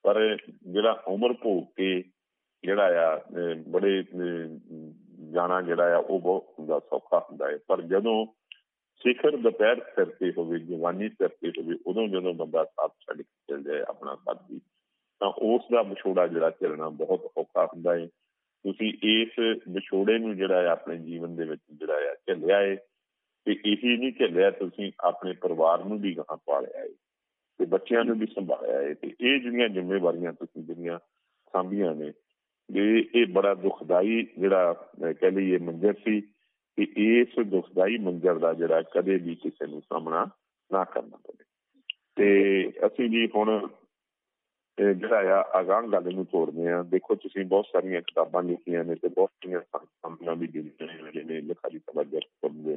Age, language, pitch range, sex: 50-69, Punjabi, 90-120 Hz, male